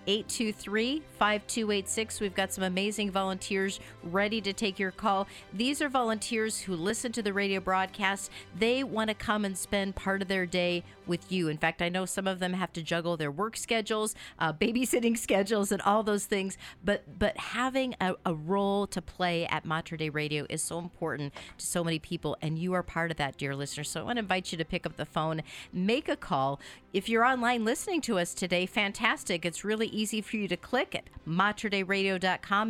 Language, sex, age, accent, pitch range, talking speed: English, female, 40-59, American, 175-210 Hz, 200 wpm